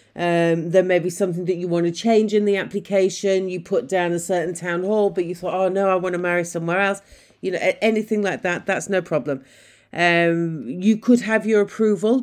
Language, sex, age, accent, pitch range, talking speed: English, female, 40-59, British, 175-210 Hz, 225 wpm